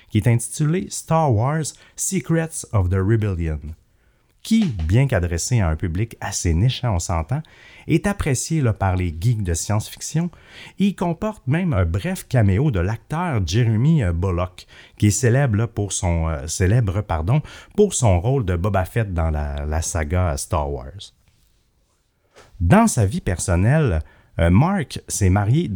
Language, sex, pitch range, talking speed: French, male, 90-135 Hz, 140 wpm